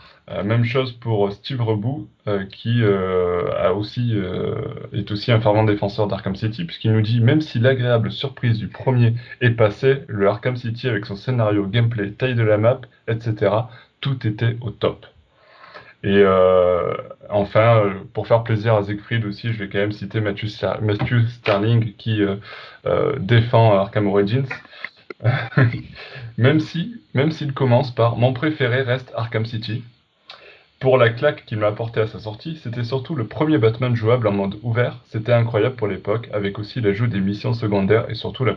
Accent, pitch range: French, 105-120 Hz